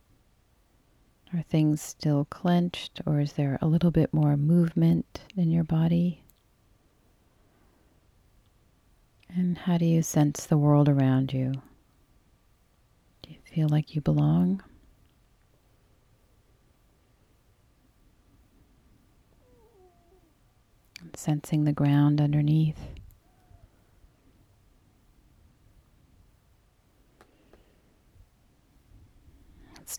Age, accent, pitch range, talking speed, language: 40-59, American, 125-160 Hz, 70 wpm, English